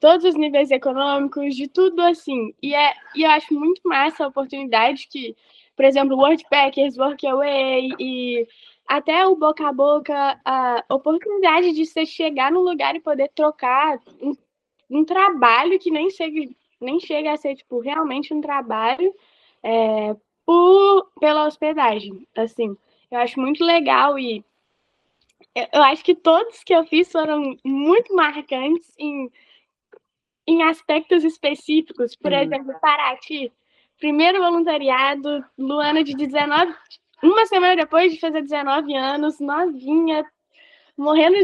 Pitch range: 265-320 Hz